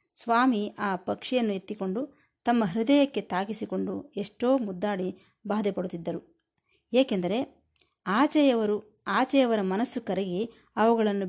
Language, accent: Kannada, native